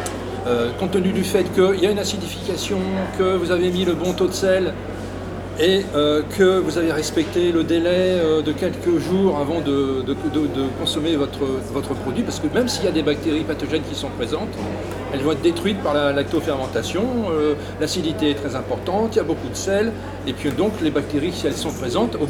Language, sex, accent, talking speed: French, male, French, 210 wpm